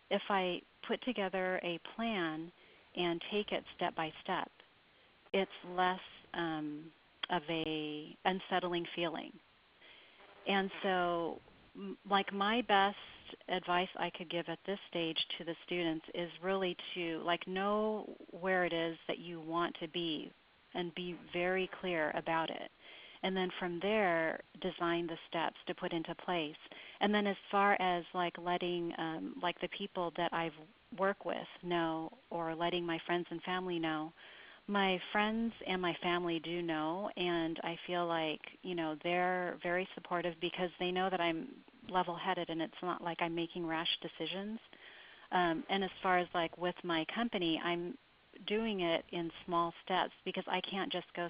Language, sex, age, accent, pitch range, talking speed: English, female, 40-59, American, 170-190 Hz, 160 wpm